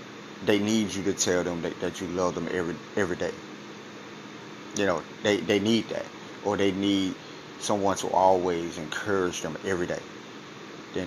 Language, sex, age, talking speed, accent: English, male, 30-49, 170 wpm, American